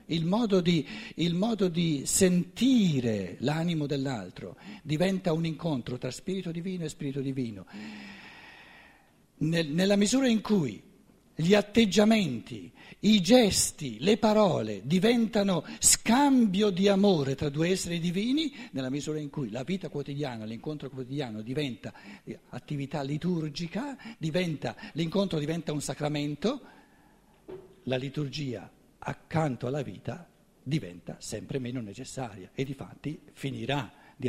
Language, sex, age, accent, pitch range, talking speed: Italian, male, 60-79, native, 125-180 Hz, 110 wpm